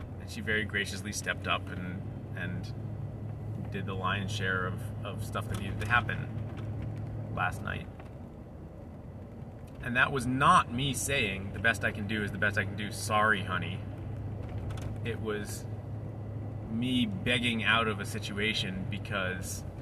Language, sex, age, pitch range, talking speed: English, male, 30-49, 105-115 Hz, 145 wpm